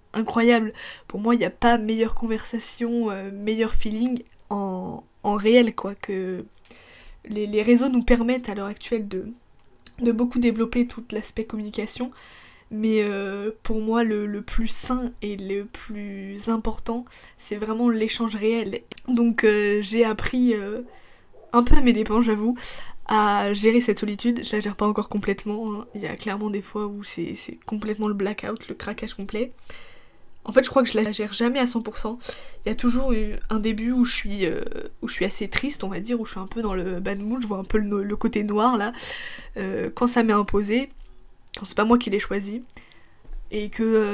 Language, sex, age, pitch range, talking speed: French, female, 20-39, 205-235 Hz, 205 wpm